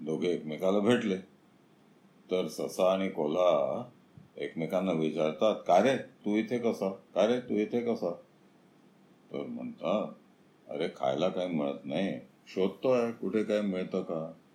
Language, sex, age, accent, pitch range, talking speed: Marathi, male, 50-69, native, 95-130 Hz, 125 wpm